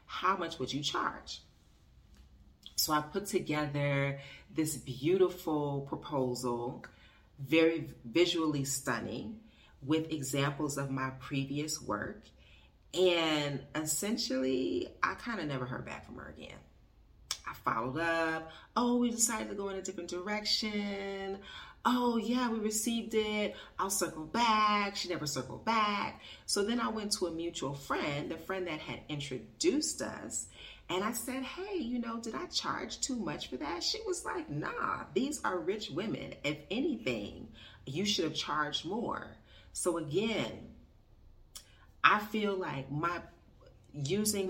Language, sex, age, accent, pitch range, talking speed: English, female, 40-59, American, 135-205 Hz, 140 wpm